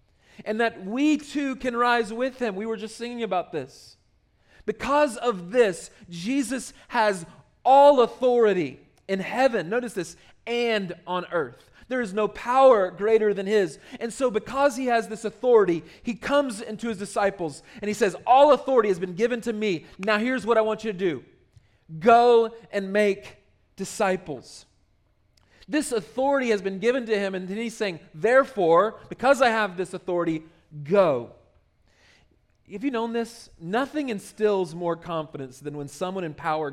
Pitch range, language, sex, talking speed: 170-235 Hz, English, male, 165 wpm